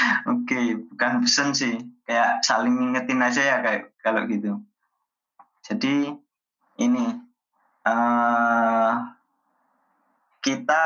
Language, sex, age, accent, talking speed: Indonesian, male, 20-39, native, 95 wpm